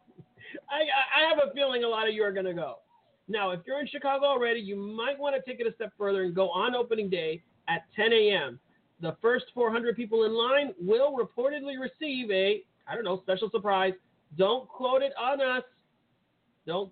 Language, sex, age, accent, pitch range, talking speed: English, male, 40-59, American, 180-235 Hz, 200 wpm